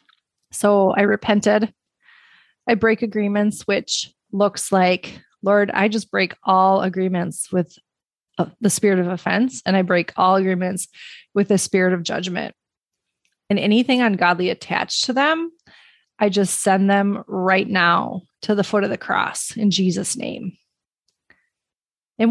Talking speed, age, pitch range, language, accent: 140 wpm, 30-49, 185-215 Hz, English, American